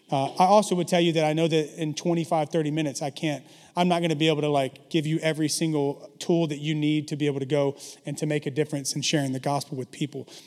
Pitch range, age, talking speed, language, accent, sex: 150-175 Hz, 30-49, 275 wpm, English, American, male